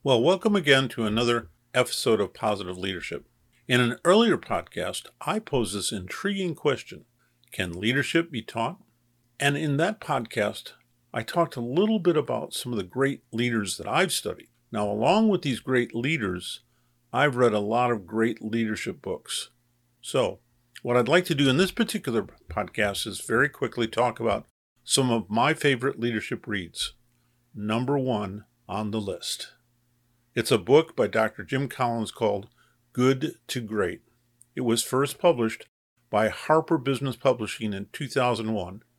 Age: 50-69